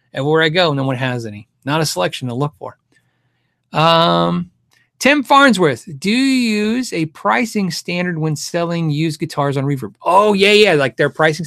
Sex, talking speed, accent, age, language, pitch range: male, 185 wpm, American, 30-49, English, 140-205 Hz